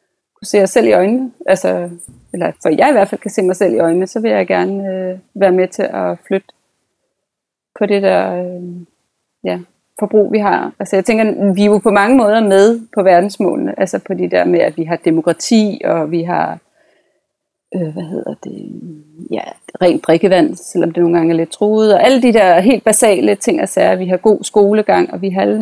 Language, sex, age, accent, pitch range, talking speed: Danish, female, 30-49, native, 170-205 Hz, 215 wpm